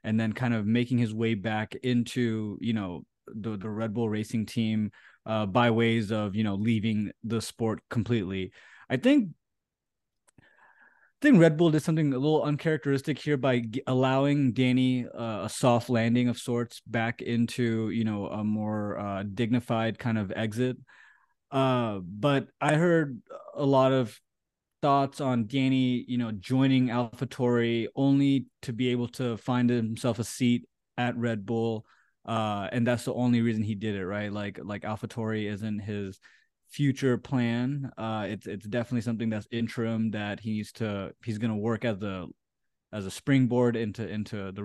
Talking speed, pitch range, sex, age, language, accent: 170 wpm, 110-130 Hz, male, 20-39, English, American